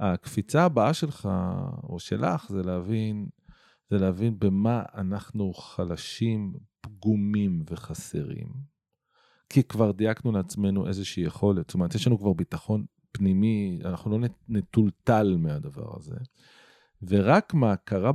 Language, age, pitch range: Hebrew, 40-59, 100-145 Hz